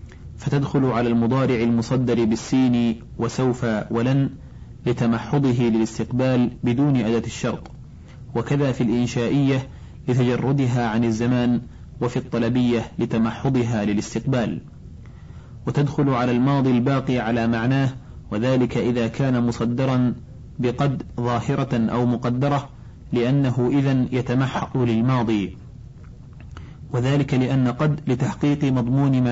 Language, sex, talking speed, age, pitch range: Arabic, male, 95 wpm, 30-49, 115-135 Hz